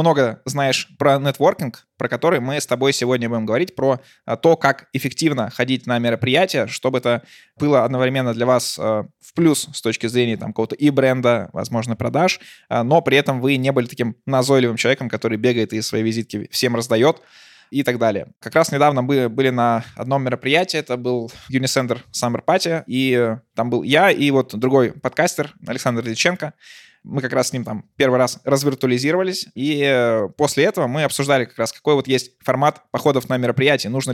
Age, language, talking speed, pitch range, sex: 20-39, Russian, 180 wpm, 120-140 Hz, male